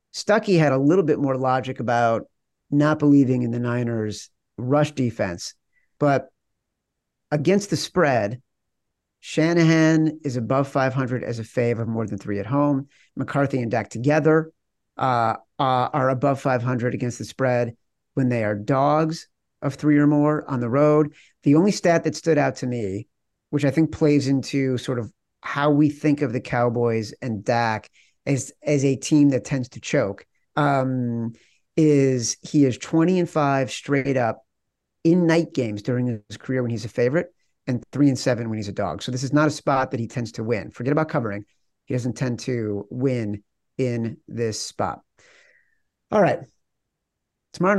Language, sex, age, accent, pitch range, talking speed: English, male, 40-59, American, 120-150 Hz, 170 wpm